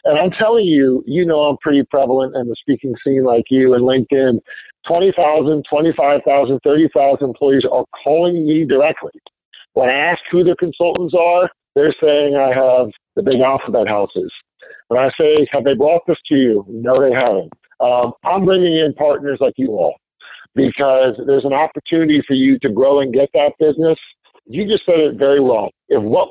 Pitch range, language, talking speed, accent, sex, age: 130-170 Hz, English, 180 wpm, American, male, 50-69